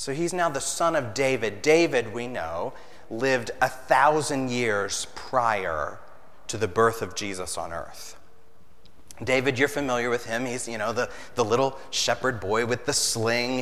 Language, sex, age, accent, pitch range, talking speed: English, male, 30-49, American, 105-145 Hz, 165 wpm